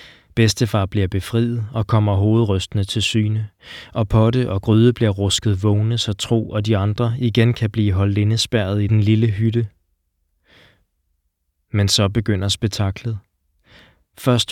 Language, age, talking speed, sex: Danish, 20-39, 140 wpm, male